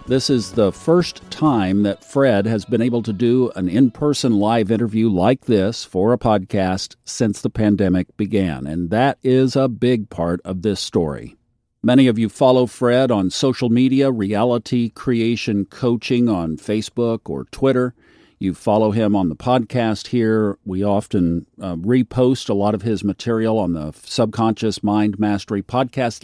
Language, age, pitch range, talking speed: English, 50-69, 100-125 Hz, 160 wpm